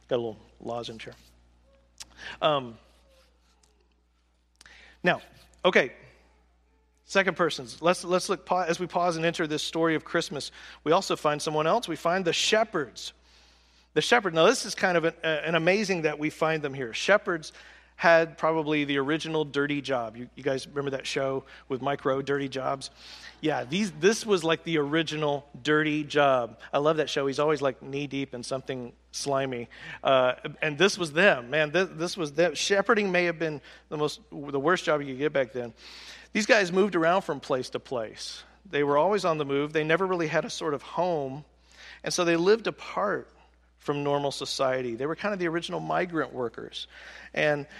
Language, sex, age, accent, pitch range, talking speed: English, male, 40-59, American, 135-175 Hz, 185 wpm